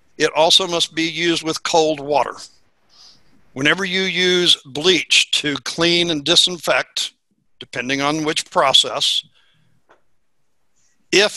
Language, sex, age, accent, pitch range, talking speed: English, male, 60-79, American, 150-185 Hz, 110 wpm